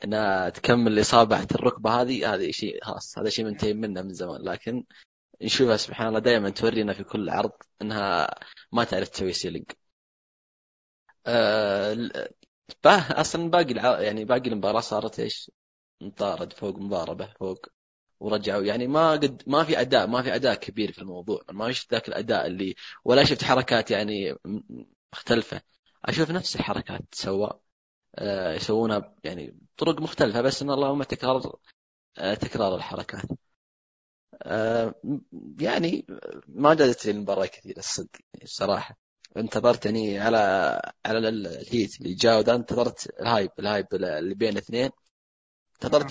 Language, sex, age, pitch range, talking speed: Arabic, male, 20-39, 100-130 Hz, 130 wpm